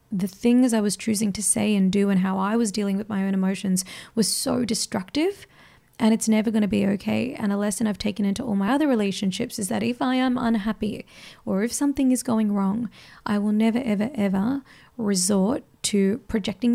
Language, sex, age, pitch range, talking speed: English, female, 20-39, 200-235 Hz, 210 wpm